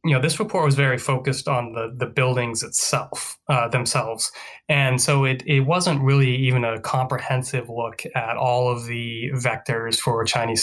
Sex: male